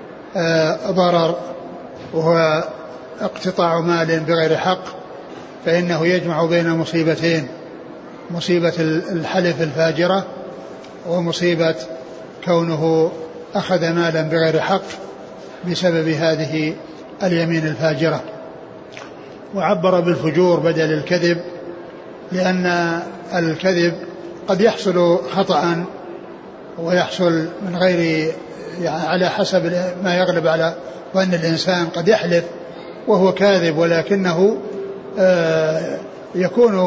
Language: Arabic